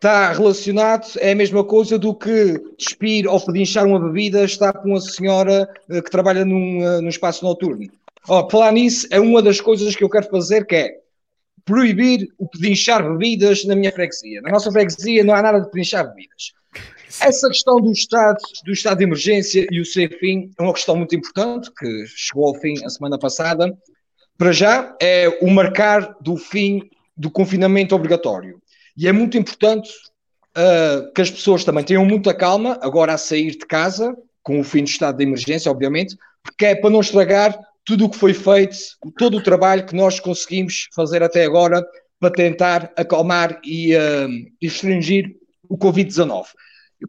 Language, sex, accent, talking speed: Portuguese, male, Portuguese, 175 wpm